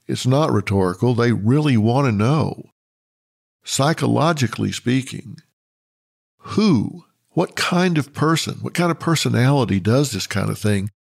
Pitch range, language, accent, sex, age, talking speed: 110-155 Hz, English, American, male, 50-69, 130 wpm